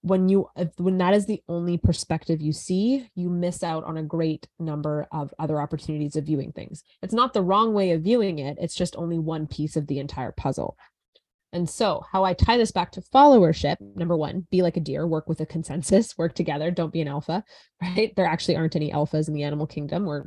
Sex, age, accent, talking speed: female, 20-39, American, 225 wpm